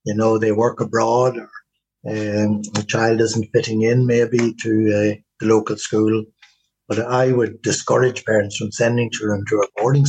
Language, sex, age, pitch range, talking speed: English, male, 60-79, 110-135 Hz, 175 wpm